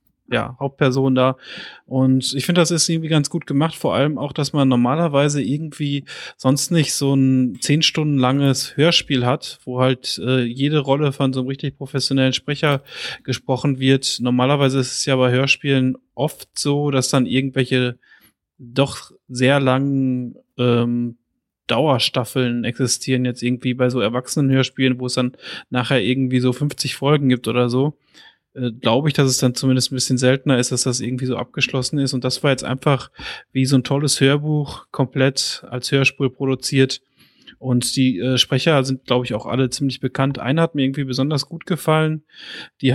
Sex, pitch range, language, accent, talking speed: male, 125-140 Hz, German, German, 170 wpm